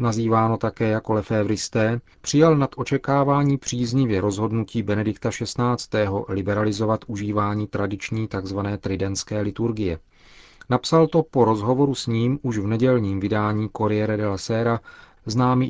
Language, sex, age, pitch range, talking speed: Czech, male, 40-59, 105-125 Hz, 120 wpm